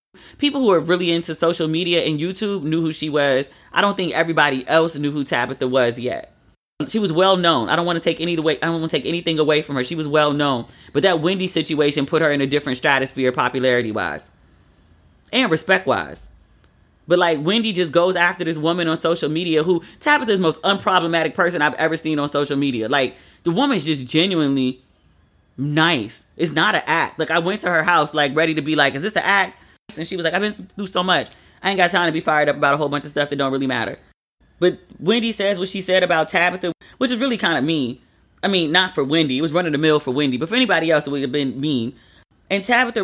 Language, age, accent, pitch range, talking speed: English, 30-49, American, 145-185 Hz, 245 wpm